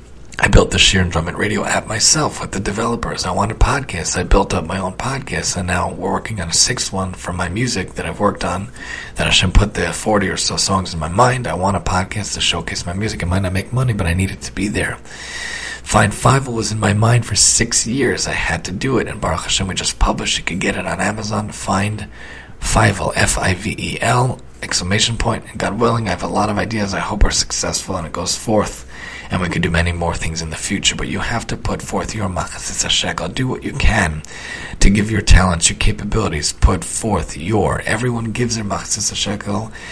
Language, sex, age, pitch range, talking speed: English, male, 40-59, 90-110 Hz, 230 wpm